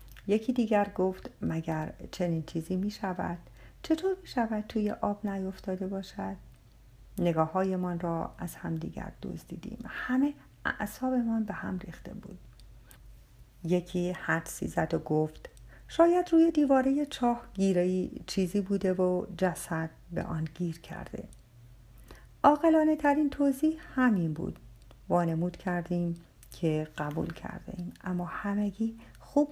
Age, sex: 50-69, female